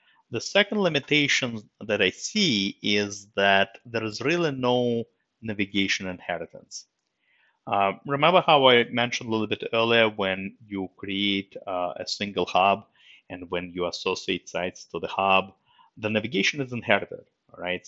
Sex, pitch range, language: male, 95-125 Hz, English